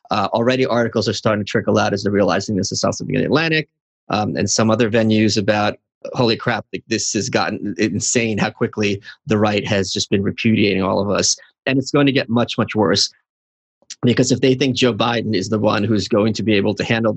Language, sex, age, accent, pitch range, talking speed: English, male, 30-49, American, 110-130 Hz, 225 wpm